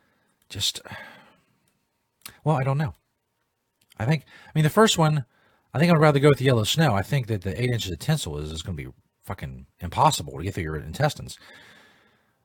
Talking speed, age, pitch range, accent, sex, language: 200 wpm, 40-59, 105-145 Hz, American, male, English